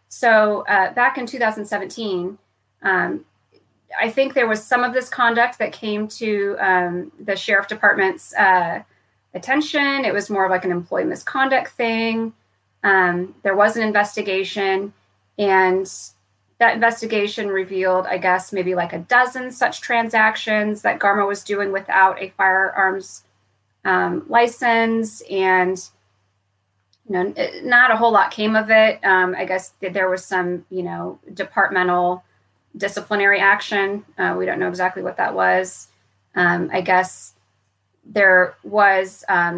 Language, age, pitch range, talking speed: English, 30-49, 180-215 Hz, 145 wpm